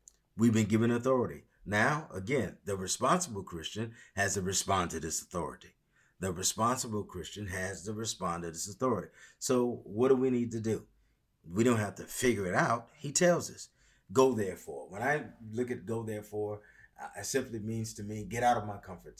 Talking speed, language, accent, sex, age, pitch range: 185 wpm, English, American, male, 30-49, 100-125 Hz